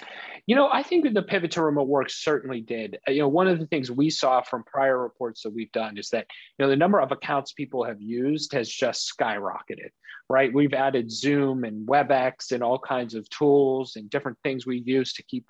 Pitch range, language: 125-150 Hz, English